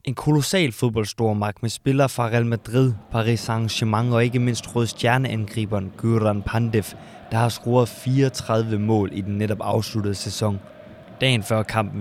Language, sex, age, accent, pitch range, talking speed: Danish, male, 20-39, native, 105-115 Hz, 145 wpm